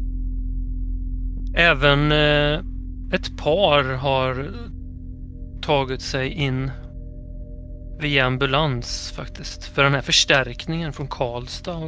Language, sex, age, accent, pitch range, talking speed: Swedish, male, 30-49, native, 85-145 Hz, 80 wpm